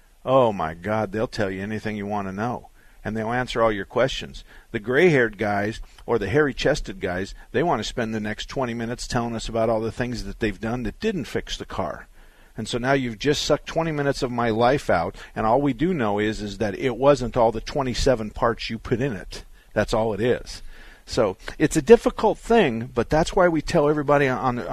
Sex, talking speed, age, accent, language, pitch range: male, 225 wpm, 50-69, American, English, 105-135 Hz